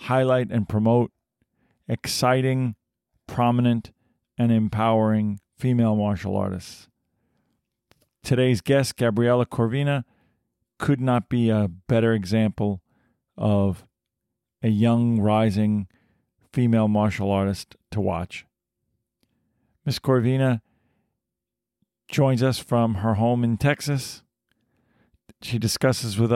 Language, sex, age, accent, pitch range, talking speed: English, male, 40-59, American, 105-120 Hz, 95 wpm